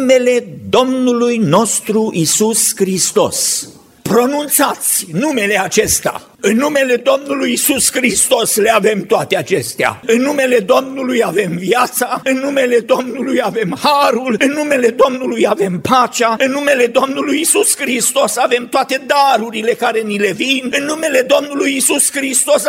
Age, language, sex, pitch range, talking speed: 50-69, Romanian, male, 240-285 Hz, 125 wpm